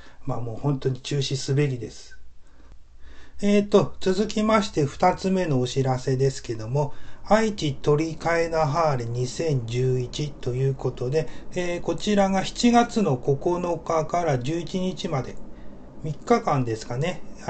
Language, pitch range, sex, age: Japanese, 130-190 Hz, male, 30-49